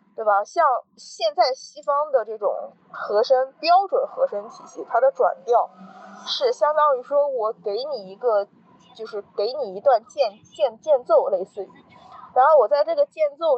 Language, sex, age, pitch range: Chinese, female, 20-39, 205-300 Hz